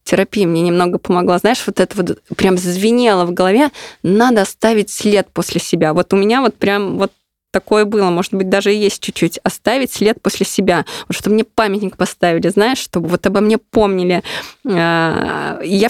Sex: female